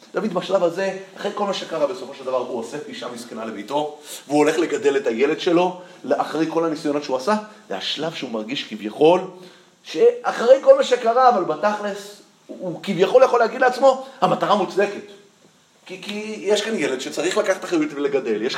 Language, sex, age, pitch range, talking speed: Hebrew, male, 30-49, 130-205 Hz, 175 wpm